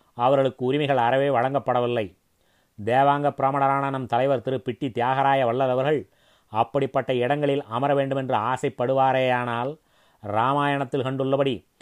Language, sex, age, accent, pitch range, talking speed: Tamil, male, 30-49, native, 120-140 Hz, 100 wpm